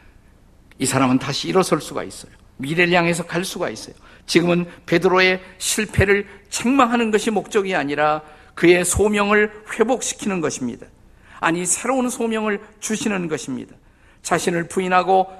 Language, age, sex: Korean, 50-69, male